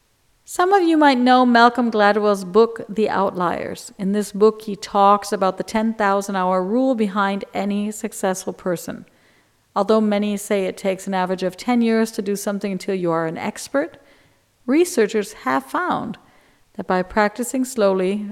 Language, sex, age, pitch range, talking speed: English, female, 50-69, 185-230 Hz, 155 wpm